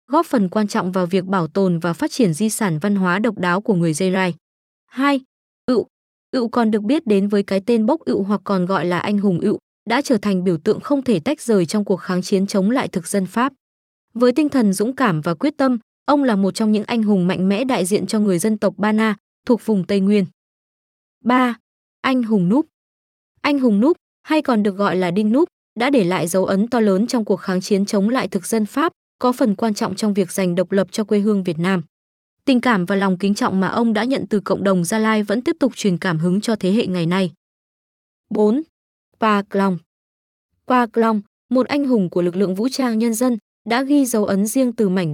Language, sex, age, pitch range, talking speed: Vietnamese, female, 20-39, 190-245 Hz, 235 wpm